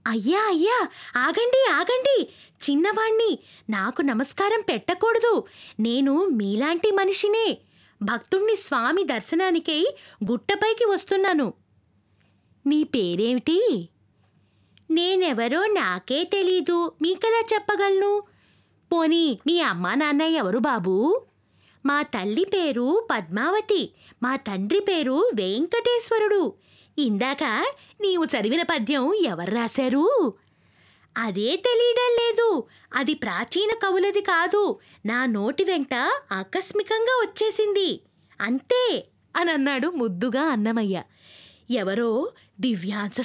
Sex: female